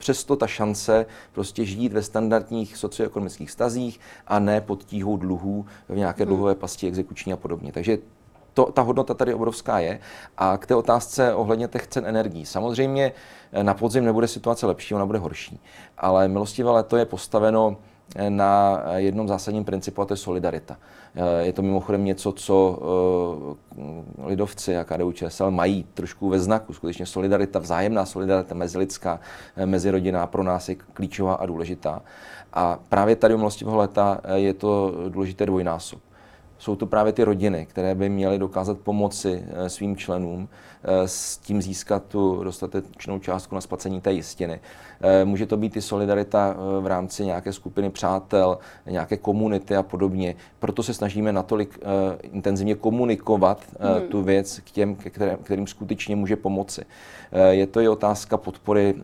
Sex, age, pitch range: male, 30-49, 95-105 Hz